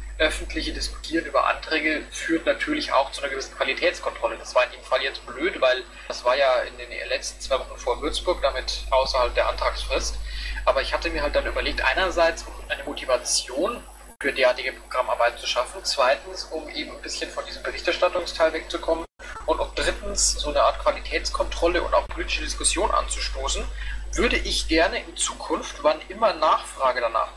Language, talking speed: German, 170 wpm